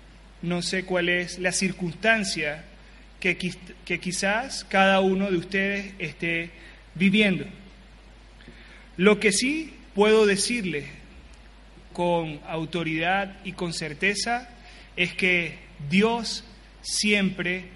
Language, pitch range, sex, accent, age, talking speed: Spanish, 170-205 Hz, male, Argentinian, 30-49, 95 wpm